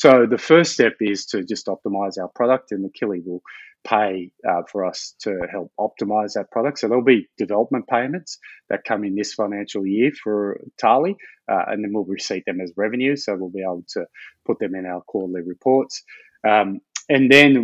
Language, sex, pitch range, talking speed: English, male, 100-115 Hz, 195 wpm